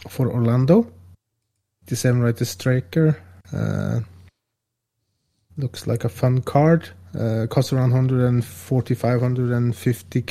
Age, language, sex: 30-49, English, male